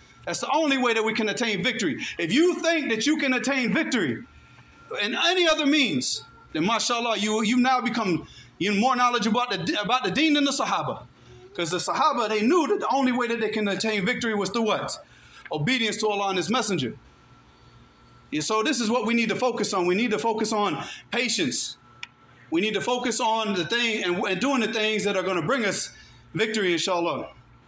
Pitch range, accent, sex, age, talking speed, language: 195-260 Hz, American, male, 40-59, 210 wpm, English